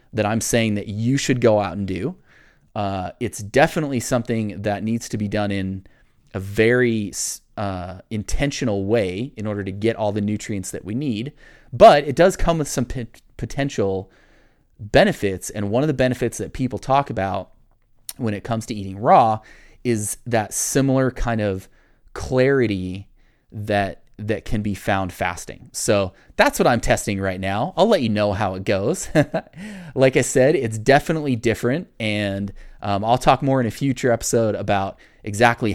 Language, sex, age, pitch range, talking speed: English, male, 30-49, 100-125 Hz, 170 wpm